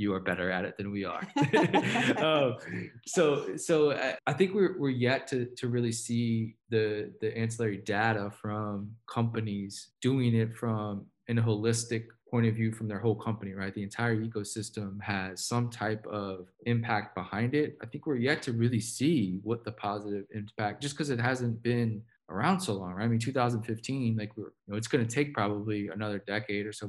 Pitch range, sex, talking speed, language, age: 105-120 Hz, male, 190 wpm, English, 20-39